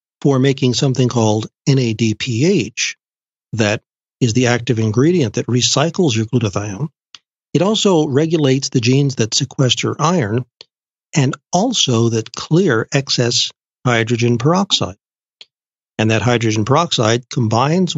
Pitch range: 115-150 Hz